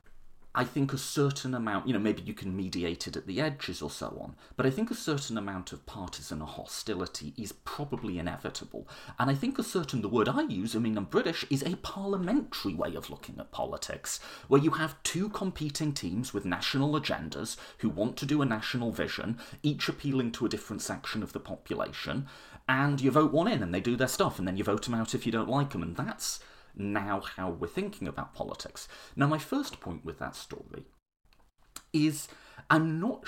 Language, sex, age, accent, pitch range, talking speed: English, male, 30-49, British, 115-155 Hz, 205 wpm